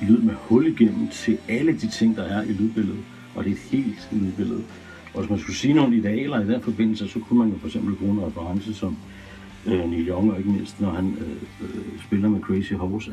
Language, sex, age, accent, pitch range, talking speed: Danish, male, 60-79, native, 100-115 Hz, 230 wpm